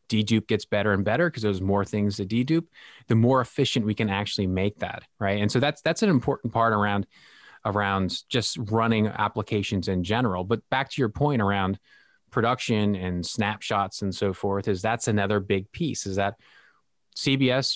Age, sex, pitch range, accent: 20-39, male, 100-125 Hz, American